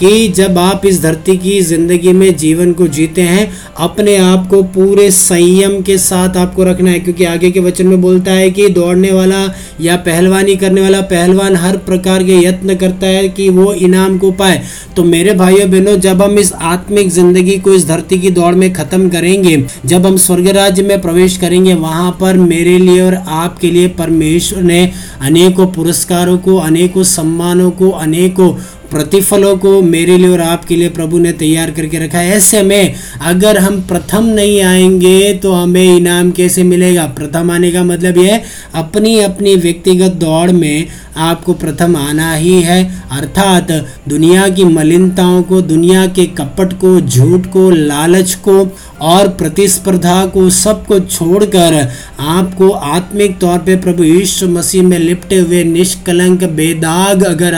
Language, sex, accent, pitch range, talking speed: Hindi, male, native, 170-190 Hz, 165 wpm